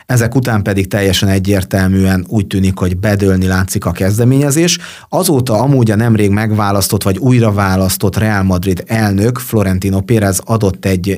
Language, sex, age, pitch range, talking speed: Hungarian, male, 30-49, 95-110 Hz, 140 wpm